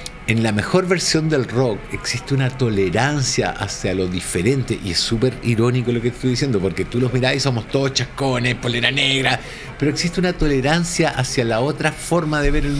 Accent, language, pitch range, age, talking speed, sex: Argentinian, Spanish, 120-160 Hz, 50-69, 190 wpm, male